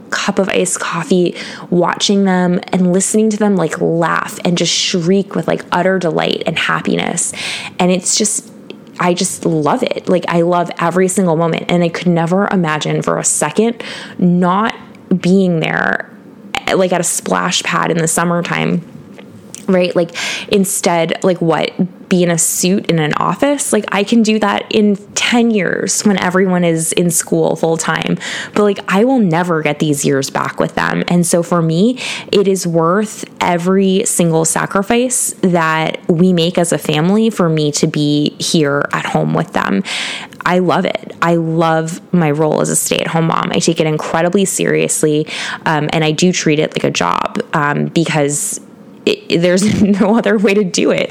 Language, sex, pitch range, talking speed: English, female, 160-200 Hz, 180 wpm